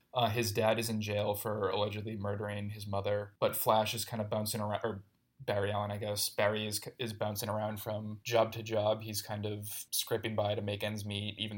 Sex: male